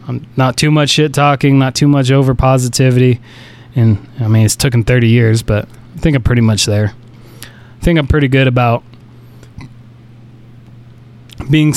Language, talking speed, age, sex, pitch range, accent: English, 170 wpm, 20-39, male, 115-130 Hz, American